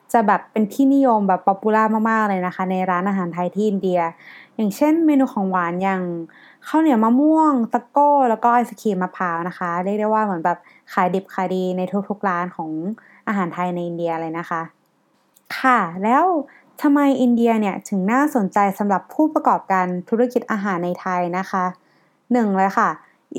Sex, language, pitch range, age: female, Thai, 190-250 Hz, 20-39